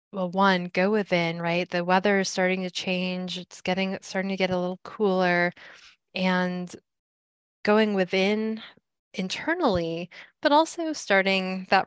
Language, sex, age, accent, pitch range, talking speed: English, female, 20-39, American, 175-195 Hz, 135 wpm